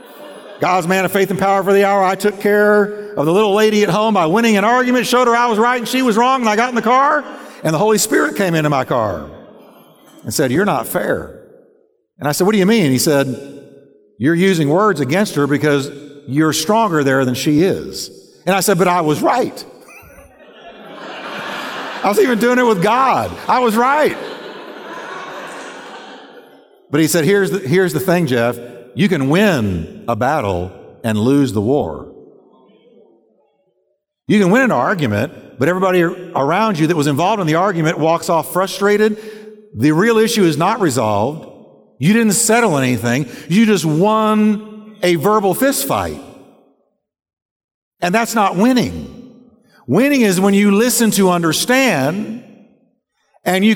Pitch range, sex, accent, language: 155-220 Hz, male, American, English